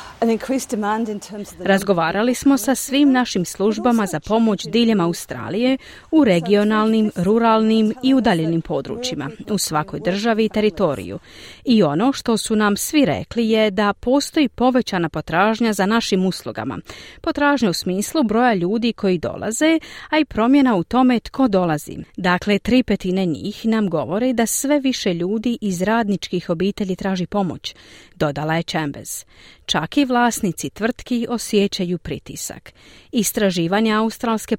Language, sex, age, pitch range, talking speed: Croatian, female, 40-59, 185-245 Hz, 130 wpm